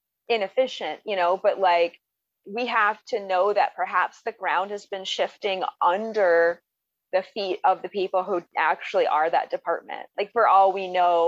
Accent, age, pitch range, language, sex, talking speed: American, 30-49, 180-220 Hz, English, female, 170 wpm